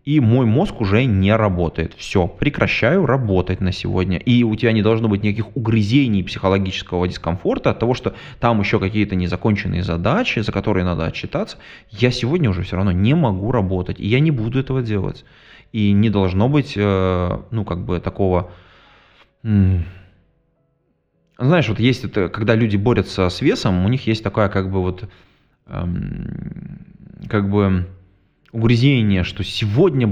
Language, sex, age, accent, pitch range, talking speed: Russian, male, 20-39, native, 95-120 Hz, 150 wpm